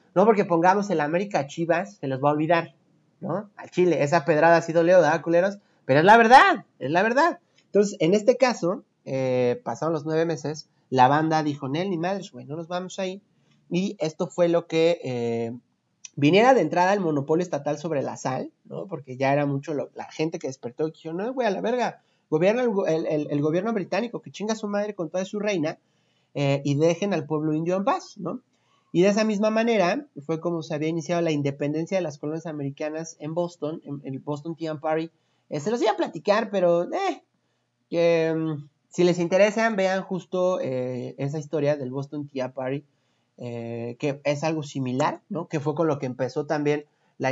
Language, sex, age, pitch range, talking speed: Spanish, male, 30-49, 140-180 Hz, 210 wpm